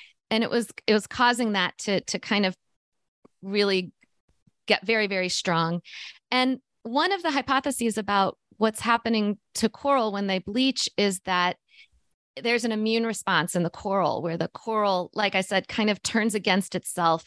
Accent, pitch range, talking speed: American, 195-245 Hz, 170 wpm